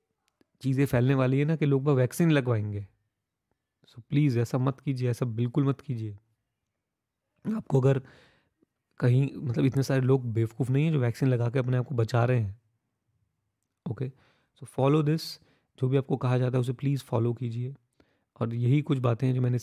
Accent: native